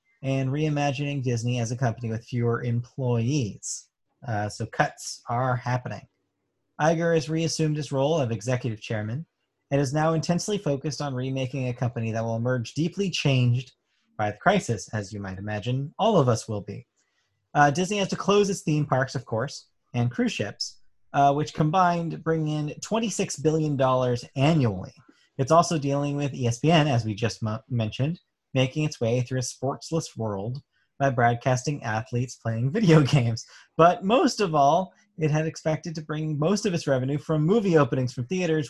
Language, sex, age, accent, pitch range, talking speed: English, male, 30-49, American, 120-155 Hz, 170 wpm